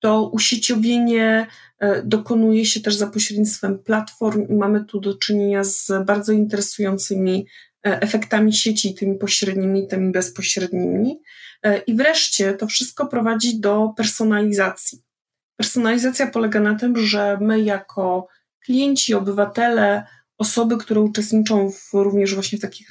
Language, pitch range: Polish, 205-230 Hz